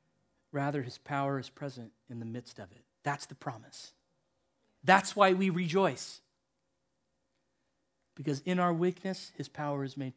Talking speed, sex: 150 wpm, male